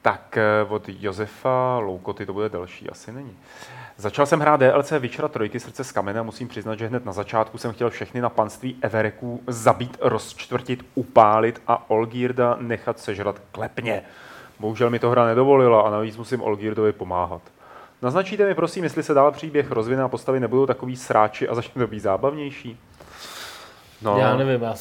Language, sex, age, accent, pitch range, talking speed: Czech, male, 30-49, native, 100-125 Hz, 170 wpm